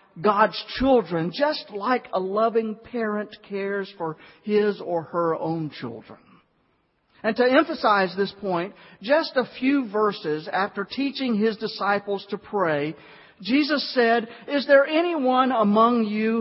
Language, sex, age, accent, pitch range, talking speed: English, male, 50-69, American, 165-245 Hz, 130 wpm